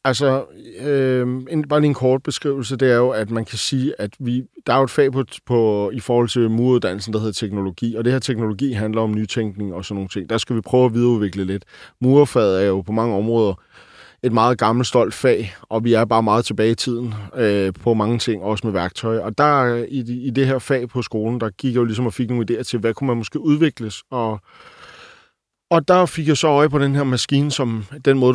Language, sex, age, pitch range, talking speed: Danish, male, 30-49, 110-130 Hz, 235 wpm